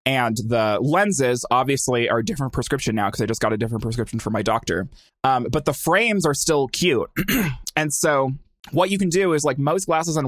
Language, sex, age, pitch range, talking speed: English, male, 20-39, 115-150 Hz, 215 wpm